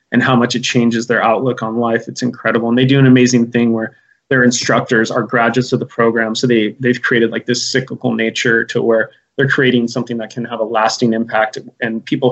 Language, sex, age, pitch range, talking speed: English, male, 20-39, 115-130 Hz, 225 wpm